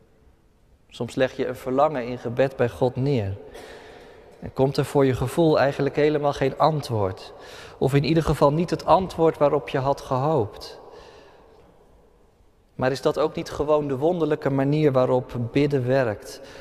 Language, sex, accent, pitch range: Dutch, male, Dutch, 120-160 Hz